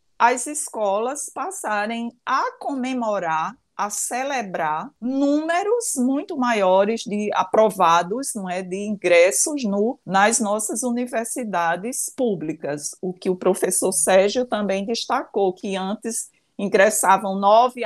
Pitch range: 195-255 Hz